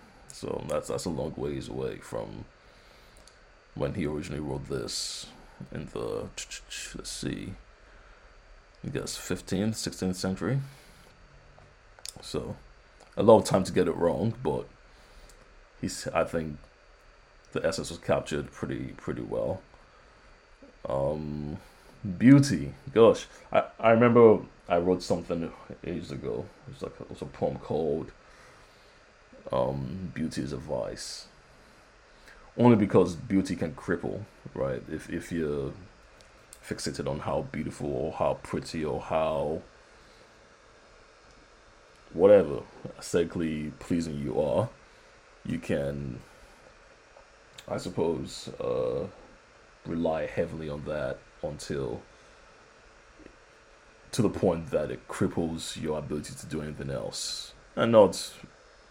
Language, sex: English, male